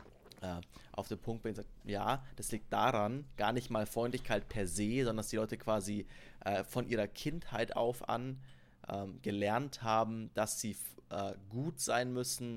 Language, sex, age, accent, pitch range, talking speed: German, male, 30-49, German, 100-120 Hz, 175 wpm